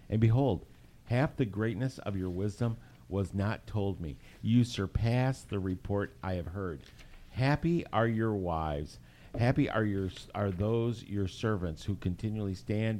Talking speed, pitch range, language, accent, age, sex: 150 wpm, 90-115 Hz, English, American, 50-69, male